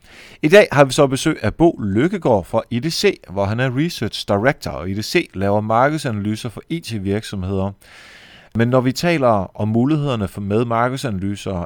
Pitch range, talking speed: 100-135 Hz, 155 wpm